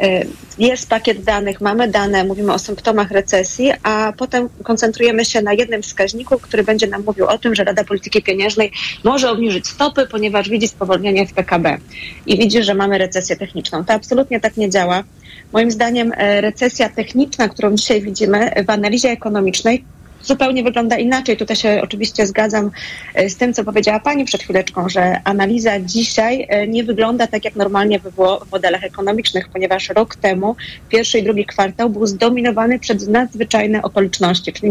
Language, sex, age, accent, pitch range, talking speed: Polish, female, 30-49, native, 200-235 Hz, 165 wpm